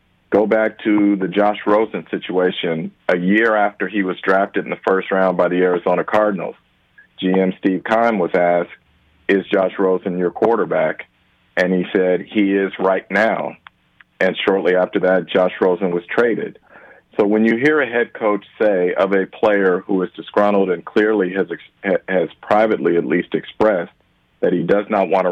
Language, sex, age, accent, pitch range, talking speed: English, male, 50-69, American, 95-105 Hz, 175 wpm